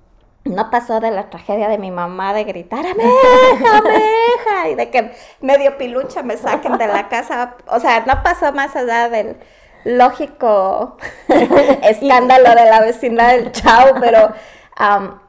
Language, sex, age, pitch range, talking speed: Spanish, female, 20-39, 190-245 Hz, 155 wpm